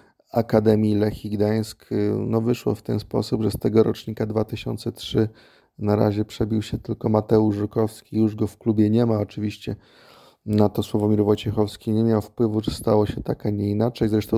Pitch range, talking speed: 100-110 Hz, 170 wpm